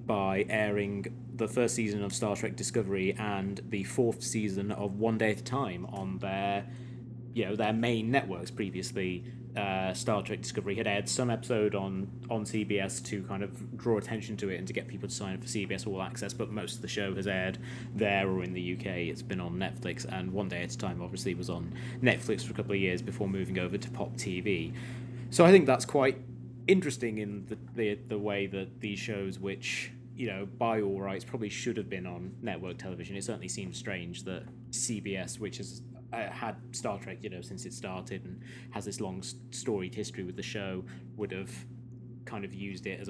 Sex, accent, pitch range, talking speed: male, British, 100-120 Hz, 210 wpm